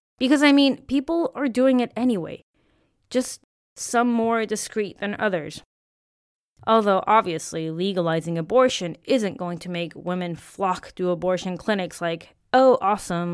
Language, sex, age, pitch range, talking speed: English, female, 20-39, 165-215 Hz, 135 wpm